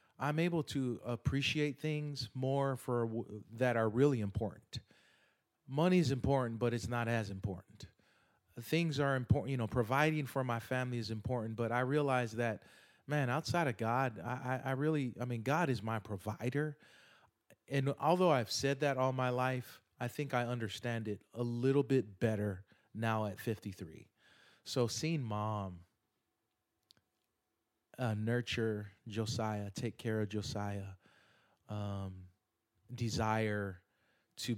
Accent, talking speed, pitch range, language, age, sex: American, 140 wpm, 105-130 Hz, English, 30-49, male